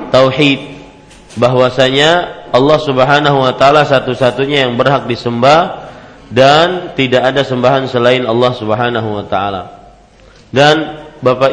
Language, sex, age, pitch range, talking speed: Malay, male, 40-59, 125-150 Hz, 110 wpm